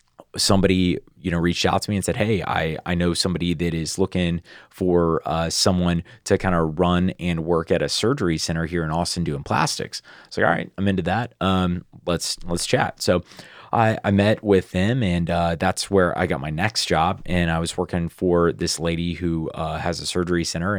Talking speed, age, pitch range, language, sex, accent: 215 wpm, 30-49, 80-95 Hz, English, male, American